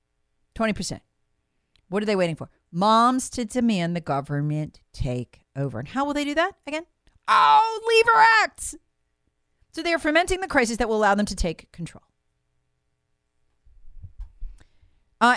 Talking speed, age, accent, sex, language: 140 wpm, 40-59, American, female, English